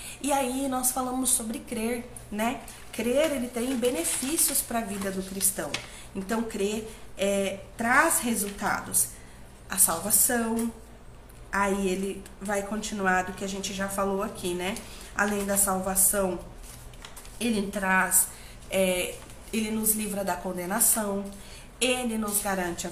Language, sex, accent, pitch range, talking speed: Portuguese, female, Brazilian, 195-245 Hz, 130 wpm